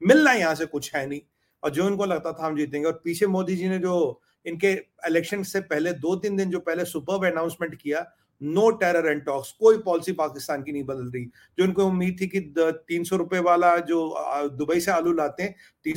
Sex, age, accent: male, 30-49, Indian